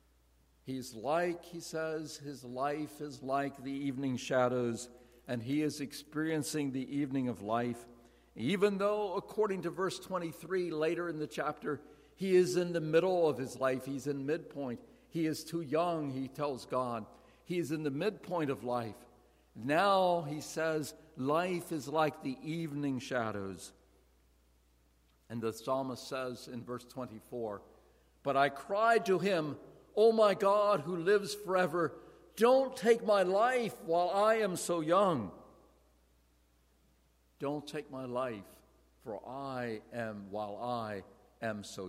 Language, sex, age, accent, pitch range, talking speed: English, male, 50-69, American, 115-165 Hz, 145 wpm